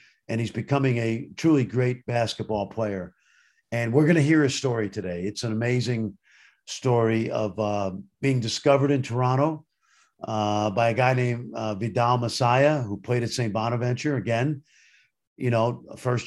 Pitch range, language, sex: 110-135 Hz, English, male